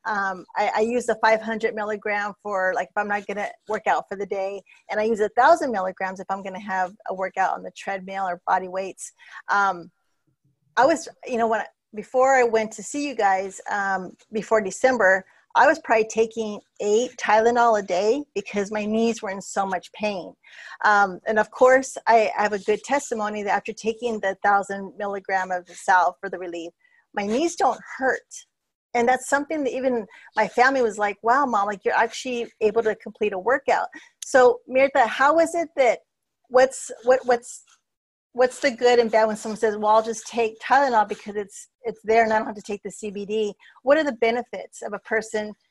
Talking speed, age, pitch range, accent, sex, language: 205 wpm, 40-59, 200-245 Hz, American, female, English